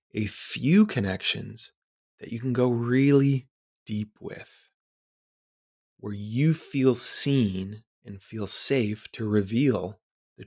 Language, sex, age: English, male, 30-49